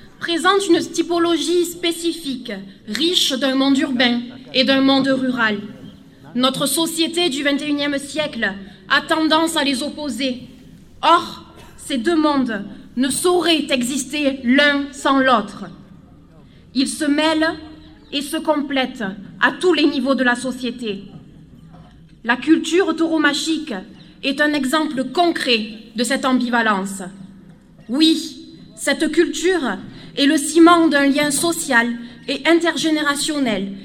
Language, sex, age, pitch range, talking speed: French, female, 20-39, 240-315 Hz, 115 wpm